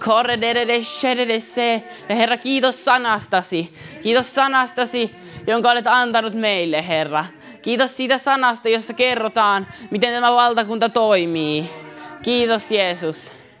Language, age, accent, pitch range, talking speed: Finnish, 20-39, native, 195-250 Hz, 100 wpm